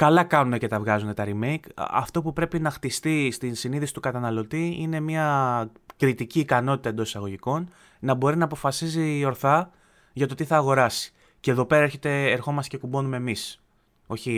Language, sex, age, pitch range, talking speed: Greek, male, 20-39, 115-155 Hz, 170 wpm